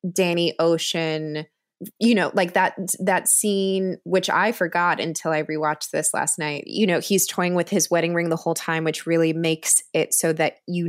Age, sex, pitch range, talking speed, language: 20-39, female, 155-180 Hz, 195 wpm, English